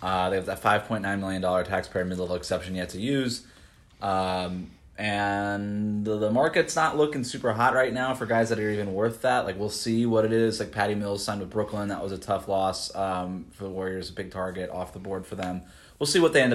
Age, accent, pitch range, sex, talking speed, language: 20-39, American, 90-110 Hz, male, 245 wpm, English